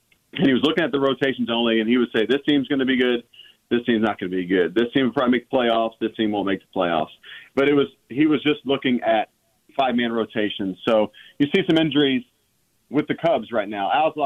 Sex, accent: male, American